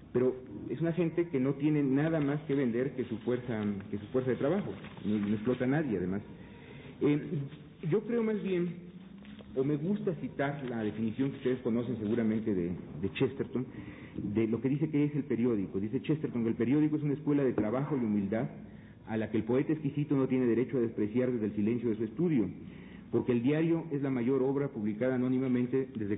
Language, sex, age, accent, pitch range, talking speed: Spanish, male, 40-59, Mexican, 110-140 Hz, 205 wpm